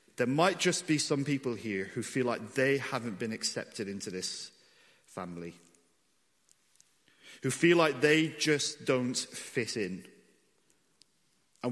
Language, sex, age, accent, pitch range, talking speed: English, male, 40-59, British, 110-145 Hz, 135 wpm